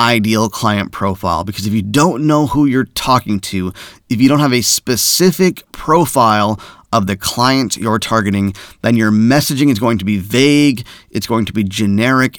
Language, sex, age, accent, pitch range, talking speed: English, male, 30-49, American, 110-150 Hz, 180 wpm